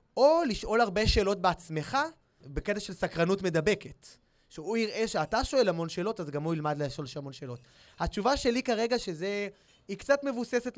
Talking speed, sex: 165 wpm, male